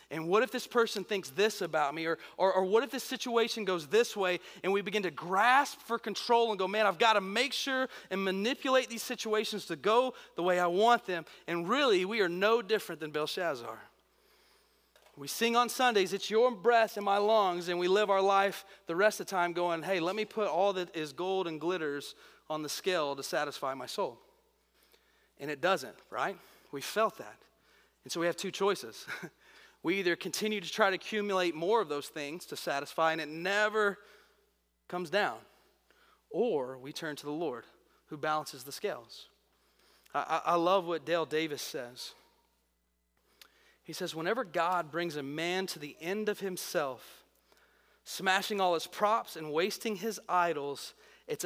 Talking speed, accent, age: 185 wpm, American, 30-49